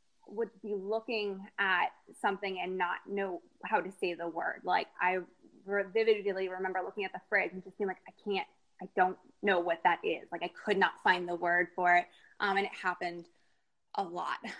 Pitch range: 185-225 Hz